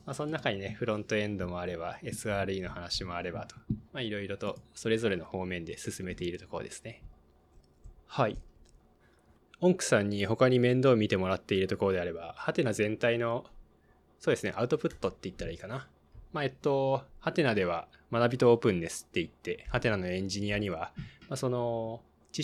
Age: 20-39